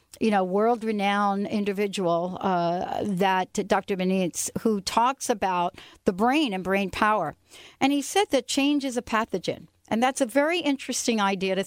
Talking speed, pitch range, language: 170 wpm, 180-235 Hz, English